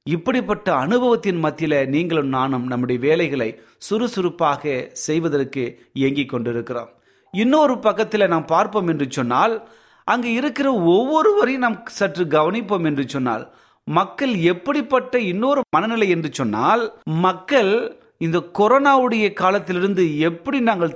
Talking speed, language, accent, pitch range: 110 wpm, Tamil, native, 155-225 Hz